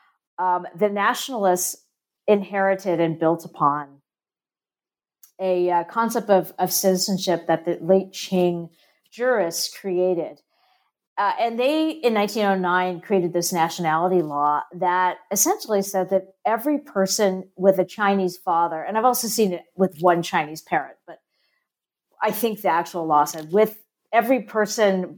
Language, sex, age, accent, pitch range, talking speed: English, female, 50-69, American, 165-200 Hz, 135 wpm